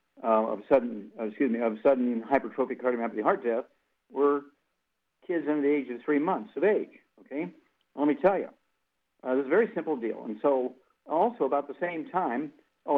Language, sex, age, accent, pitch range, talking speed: English, male, 50-69, American, 125-165 Hz, 200 wpm